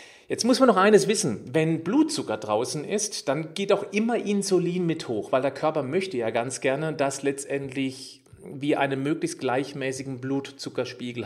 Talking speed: 165 wpm